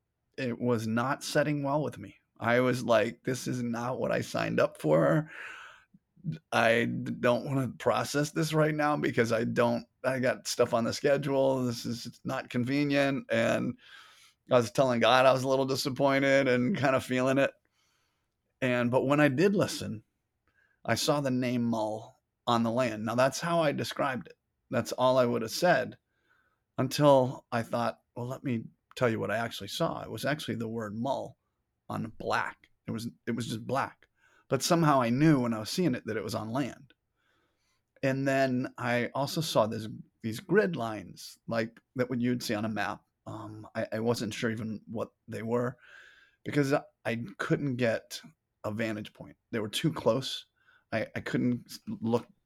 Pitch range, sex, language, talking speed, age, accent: 115-135 Hz, male, English, 185 wpm, 30-49, American